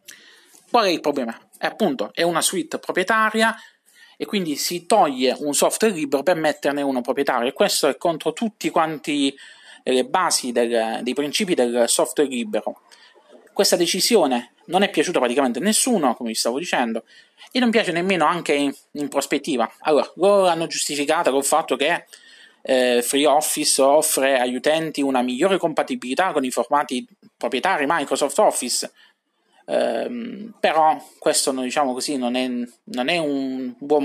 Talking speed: 155 wpm